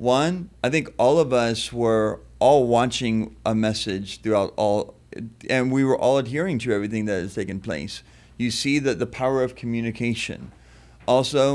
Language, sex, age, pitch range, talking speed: English, male, 40-59, 110-135 Hz, 165 wpm